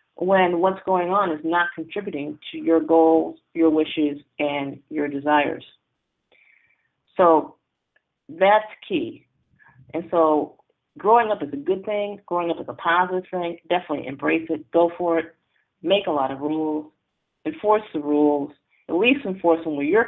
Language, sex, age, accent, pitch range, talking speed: English, female, 40-59, American, 155-215 Hz, 155 wpm